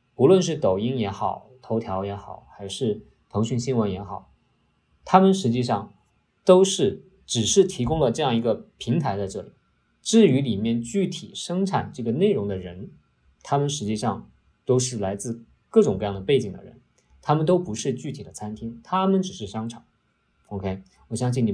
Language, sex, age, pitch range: Chinese, male, 50-69, 105-170 Hz